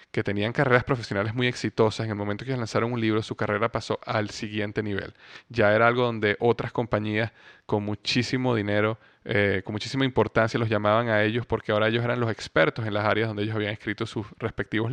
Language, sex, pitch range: Spanish, male, 105-120 Hz